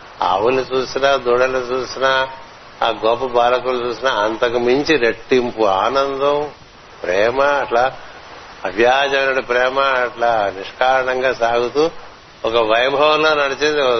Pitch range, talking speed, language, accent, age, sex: 120-140 Hz, 95 wpm, Telugu, native, 60-79, male